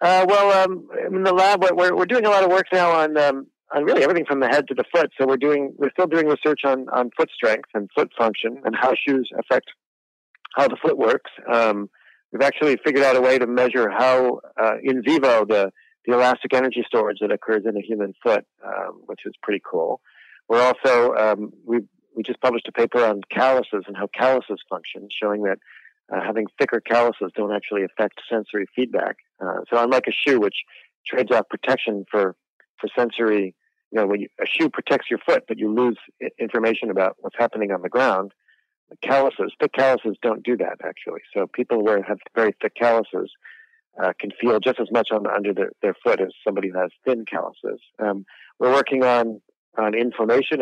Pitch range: 110-140 Hz